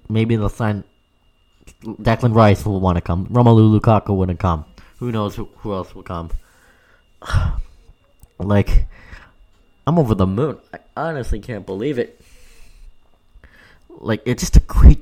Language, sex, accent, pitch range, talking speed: English, male, American, 90-115 Hz, 135 wpm